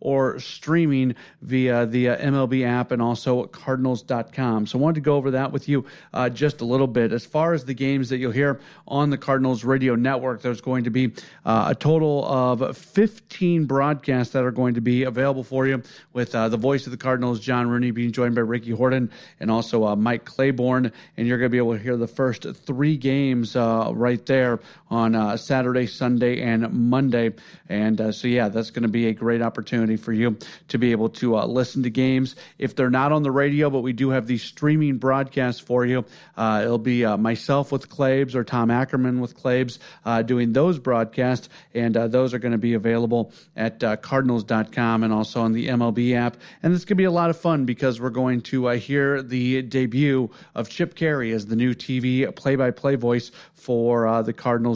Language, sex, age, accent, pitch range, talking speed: English, male, 40-59, American, 120-135 Hz, 210 wpm